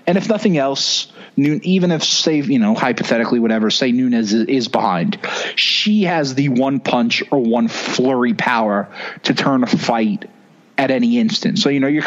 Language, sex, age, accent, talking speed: English, male, 30-49, American, 180 wpm